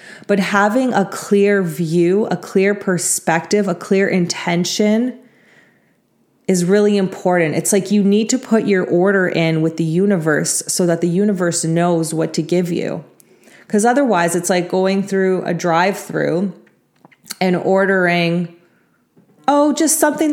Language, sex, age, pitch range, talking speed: English, female, 30-49, 170-215 Hz, 145 wpm